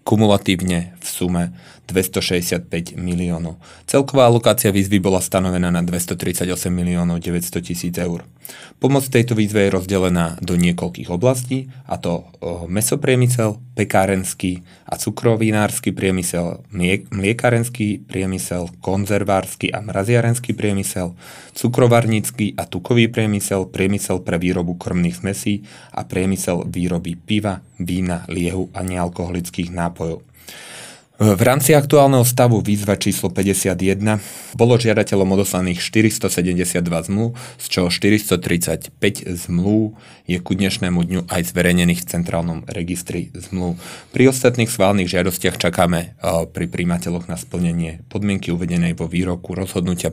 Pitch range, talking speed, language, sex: 85-105 Hz, 115 wpm, Slovak, male